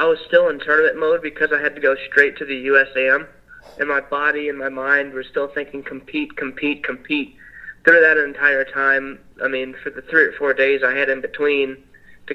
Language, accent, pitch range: English, American, 130-175 Hz